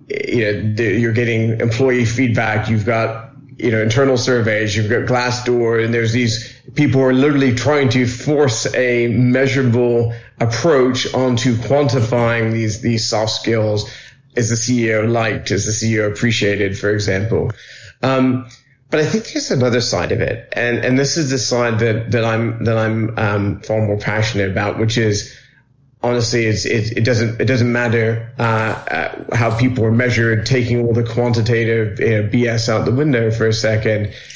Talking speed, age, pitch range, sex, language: 170 wpm, 30-49, 110-130 Hz, male, English